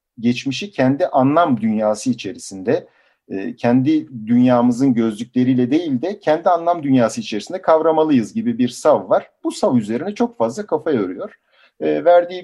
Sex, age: male, 50-69